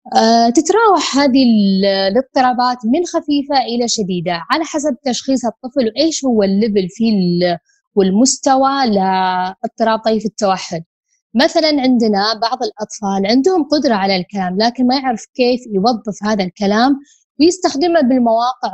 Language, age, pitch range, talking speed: Arabic, 20-39, 210-280 Hz, 120 wpm